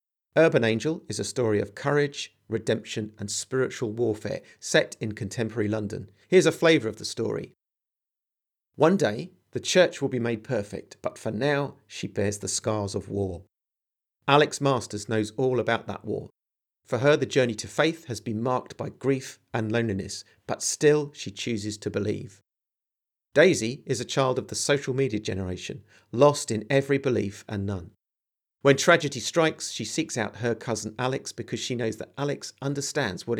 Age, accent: 40-59, British